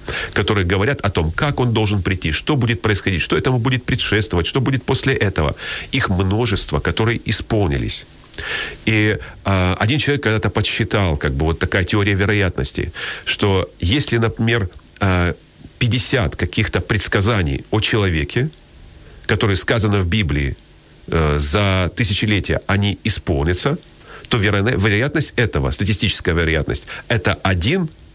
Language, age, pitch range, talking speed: Ukrainian, 40-59, 90-120 Hz, 130 wpm